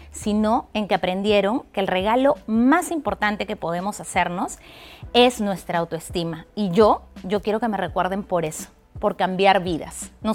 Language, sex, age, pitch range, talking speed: Spanish, female, 30-49, 185-235 Hz, 160 wpm